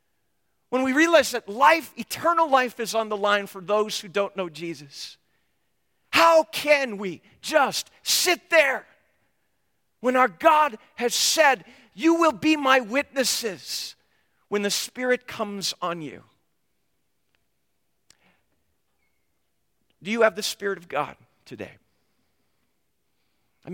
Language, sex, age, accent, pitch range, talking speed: English, male, 50-69, American, 185-265 Hz, 120 wpm